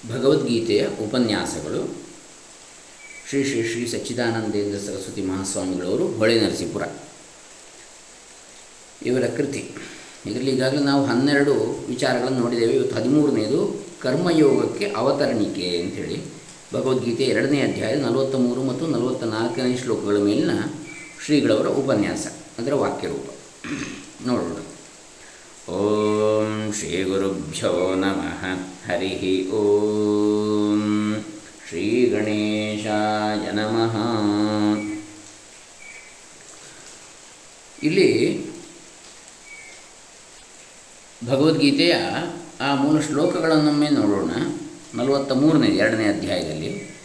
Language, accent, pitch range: Kannada, native, 105-130 Hz